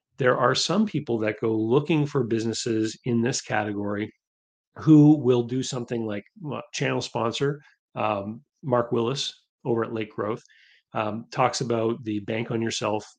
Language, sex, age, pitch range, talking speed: English, male, 30-49, 105-125 Hz, 150 wpm